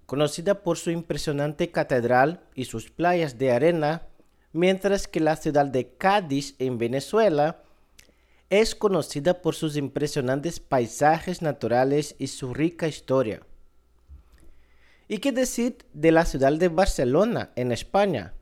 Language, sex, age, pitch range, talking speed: Portuguese, male, 50-69, 130-175 Hz, 125 wpm